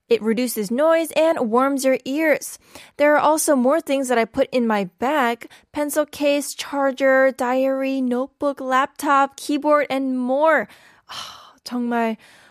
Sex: female